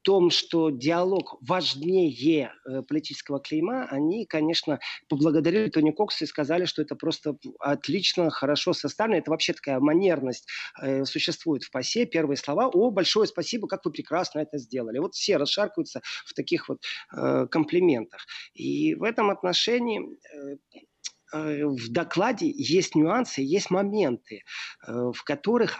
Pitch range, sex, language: 150-205 Hz, male, Russian